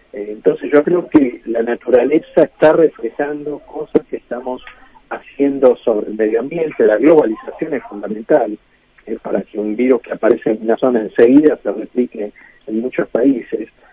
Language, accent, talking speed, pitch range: Spanish, Argentinian, 155 wpm, 115-150 Hz